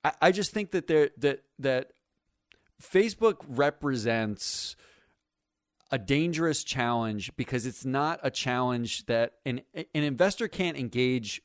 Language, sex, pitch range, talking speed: English, male, 120-160 Hz, 120 wpm